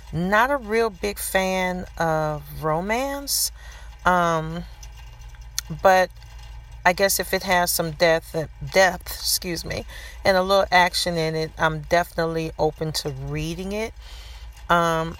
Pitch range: 145-180 Hz